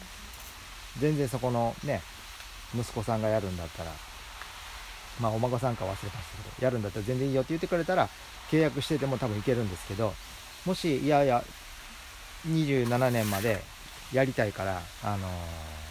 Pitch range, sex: 90-130 Hz, male